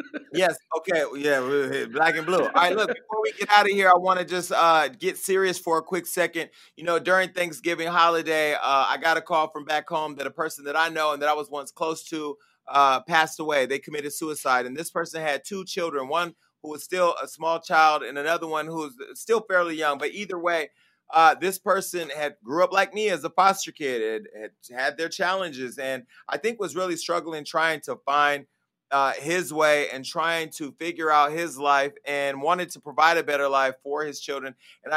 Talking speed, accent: 220 wpm, American